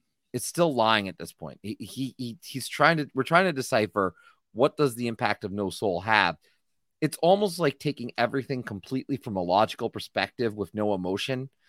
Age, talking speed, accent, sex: 30-49, 190 wpm, American, male